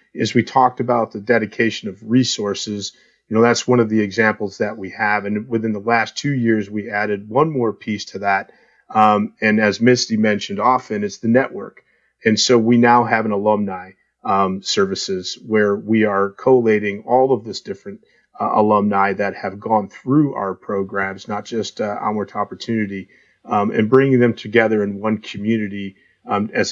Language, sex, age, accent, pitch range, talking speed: English, male, 40-59, American, 100-115 Hz, 180 wpm